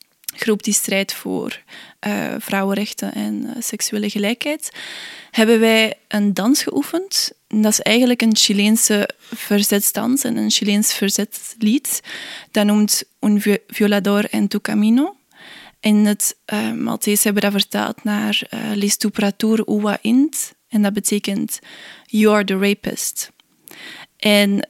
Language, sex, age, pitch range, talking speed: Dutch, female, 20-39, 200-225 Hz, 130 wpm